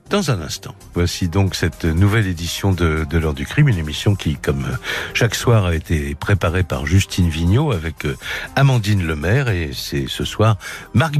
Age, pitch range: 60-79, 90-125 Hz